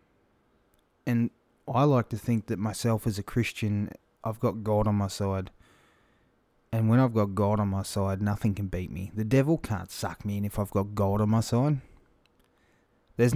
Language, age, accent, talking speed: English, 20-39, Australian, 190 wpm